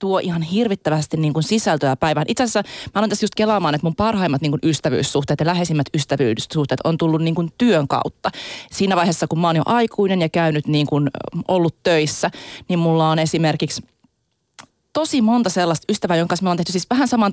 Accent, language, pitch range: native, Finnish, 155-200 Hz